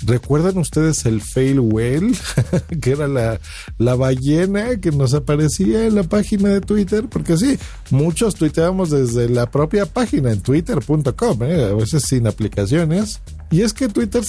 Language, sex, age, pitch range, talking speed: Spanish, male, 50-69, 120-175 Hz, 155 wpm